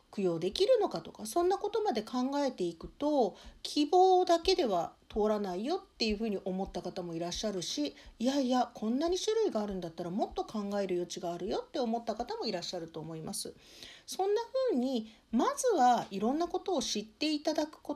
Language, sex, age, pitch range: Japanese, female, 50-69, 210-335 Hz